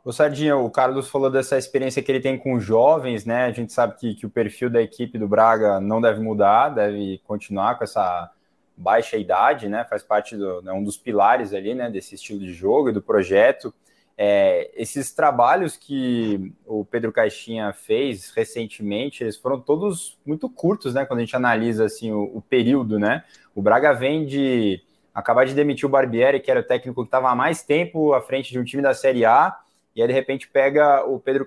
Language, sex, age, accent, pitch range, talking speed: Portuguese, male, 20-39, Brazilian, 110-135 Hz, 205 wpm